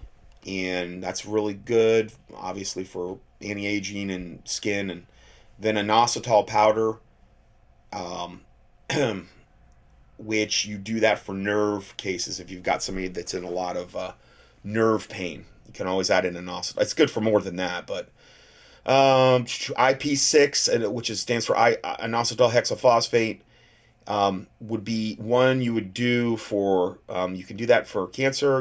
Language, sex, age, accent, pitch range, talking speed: English, male, 30-49, American, 95-115 Hz, 145 wpm